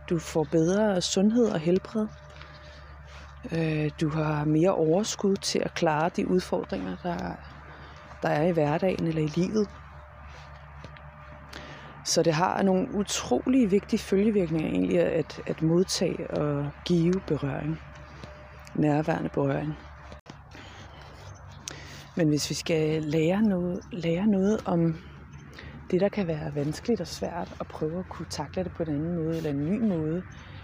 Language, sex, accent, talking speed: Danish, female, native, 130 wpm